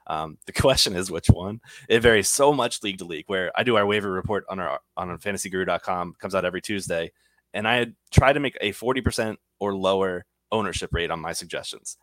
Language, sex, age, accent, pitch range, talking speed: English, male, 20-39, American, 90-110 Hz, 205 wpm